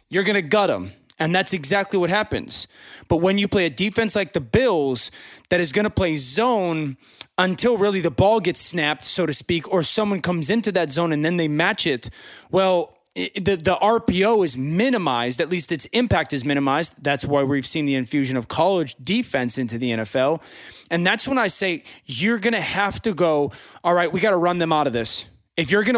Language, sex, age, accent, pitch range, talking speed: English, male, 20-39, American, 155-205 Hz, 215 wpm